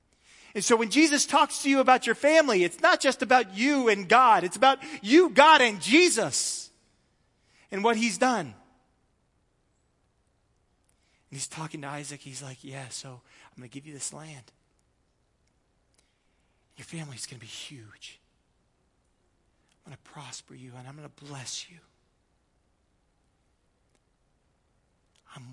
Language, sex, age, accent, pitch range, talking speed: English, male, 40-59, American, 115-165 Hz, 145 wpm